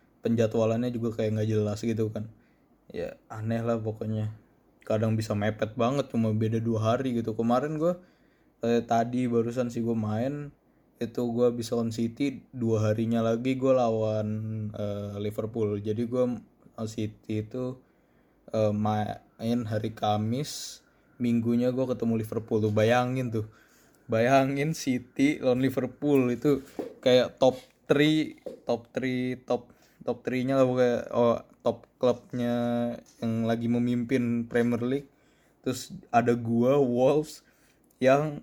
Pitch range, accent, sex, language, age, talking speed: 110-125 Hz, native, male, Indonesian, 20-39, 130 wpm